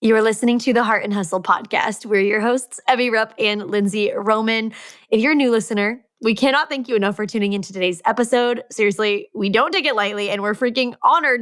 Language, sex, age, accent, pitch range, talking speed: English, female, 20-39, American, 210-265 Hz, 220 wpm